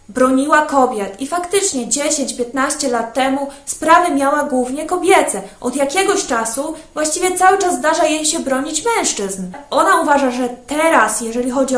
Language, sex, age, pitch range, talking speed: Polish, female, 20-39, 235-295 Hz, 145 wpm